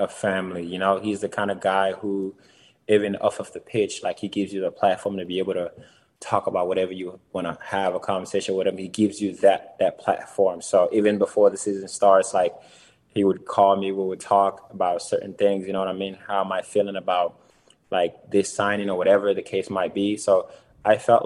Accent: American